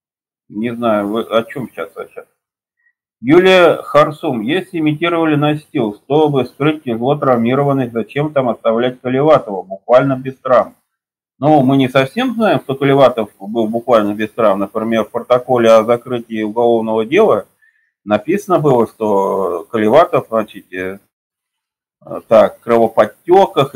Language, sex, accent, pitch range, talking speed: Russian, male, native, 120-180 Hz, 125 wpm